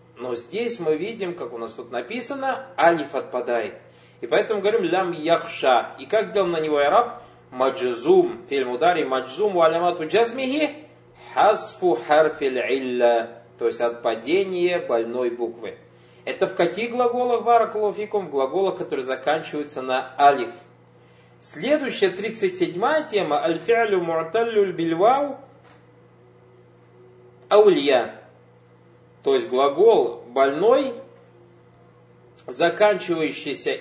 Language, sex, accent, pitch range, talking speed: Russian, male, native, 130-220 Hz, 105 wpm